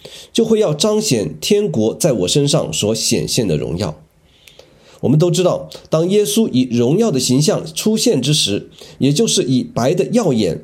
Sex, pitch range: male, 125-190 Hz